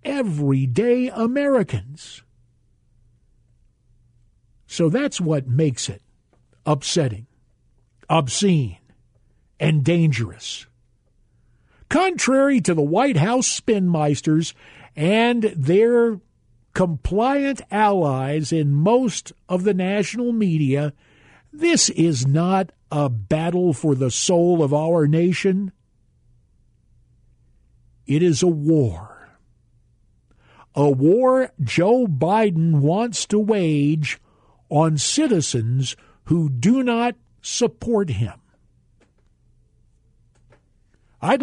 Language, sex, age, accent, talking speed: English, male, 50-69, American, 85 wpm